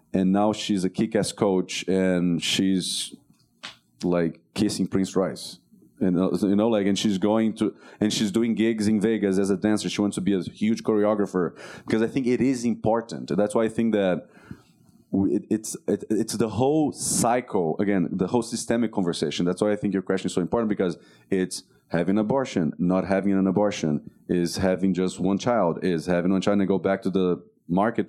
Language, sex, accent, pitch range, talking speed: English, male, Brazilian, 95-110 Hz, 200 wpm